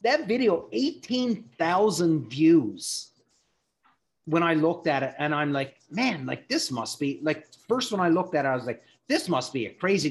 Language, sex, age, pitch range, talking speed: English, male, 30-49, 125-160 Hz, 190 wpm